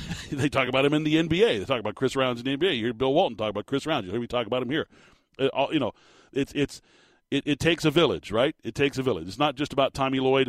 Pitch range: 105-130 Hz